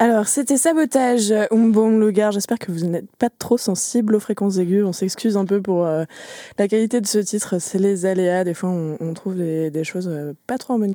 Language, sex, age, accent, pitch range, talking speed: French, female, 20-39, French, 170-220 Hz, 230 wpm